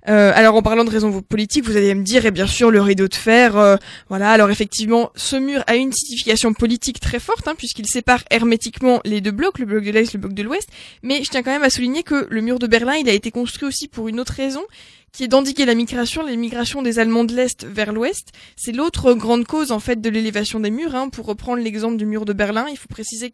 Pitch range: 220-260 Hz